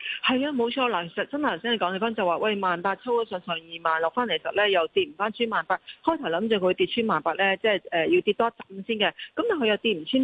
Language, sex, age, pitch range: Chinese, female, 40-59, 175-235 Hz